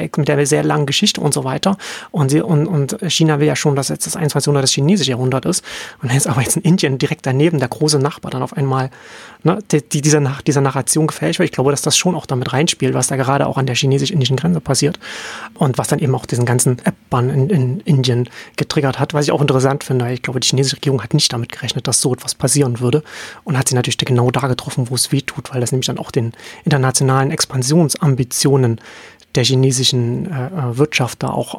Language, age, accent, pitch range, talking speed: German, 30-49, German, 130-160 Hz, 235 wpm